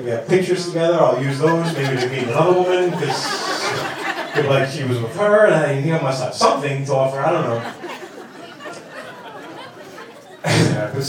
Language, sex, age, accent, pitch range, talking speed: English, male, 30-49, American, 115-155 Hz, 180 wpm